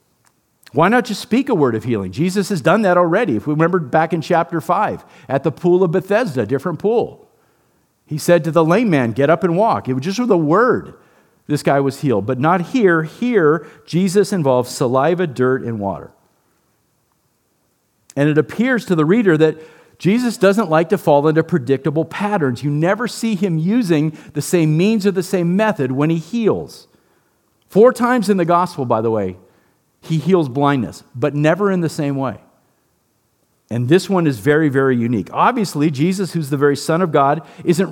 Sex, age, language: male, 50-69, English